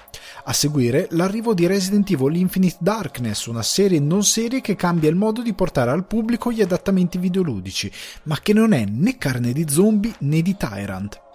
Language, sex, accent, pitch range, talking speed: Italian, male, native, 120-190 Hz, 180 wpm